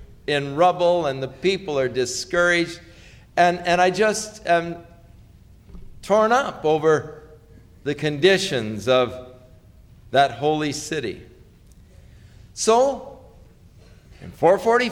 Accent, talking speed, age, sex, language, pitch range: American, 100 wpm, 50-69, male, English, 135-190 Hz